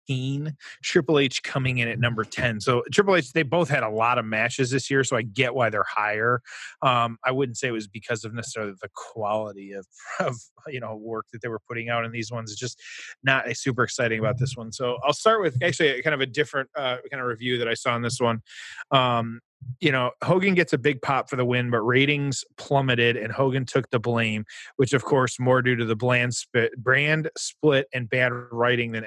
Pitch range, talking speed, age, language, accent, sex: 115-140 Hz, 230 wpm, 30-49, English, American, male